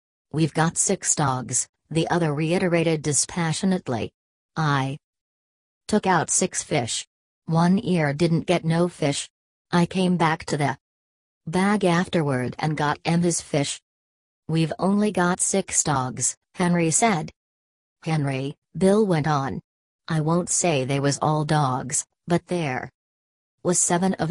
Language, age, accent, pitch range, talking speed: English, 40-59, American, 130-175 Hz, 135 wpm